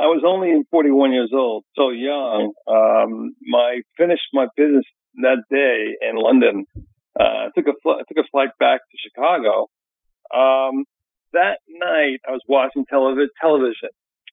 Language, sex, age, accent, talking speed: English, male, 50-69, American, 160 wpm